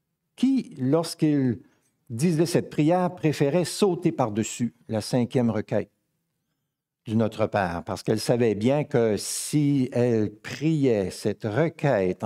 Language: French